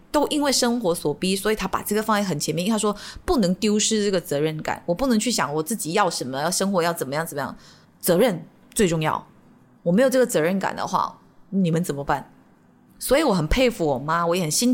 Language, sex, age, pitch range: Chinese, female, 20-39, 170-245 Hz